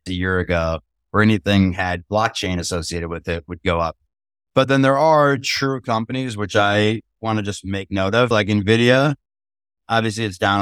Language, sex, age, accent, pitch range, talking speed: English, male, 30-49, American, 90-115 Hz, 180 wpm